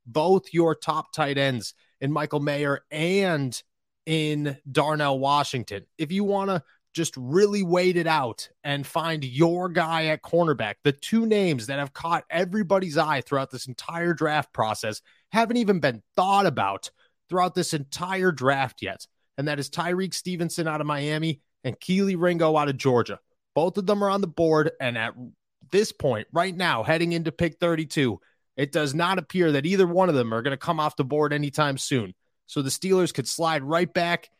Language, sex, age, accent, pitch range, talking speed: English, male, 30-49, American, 135-175 Hz, 185 wpm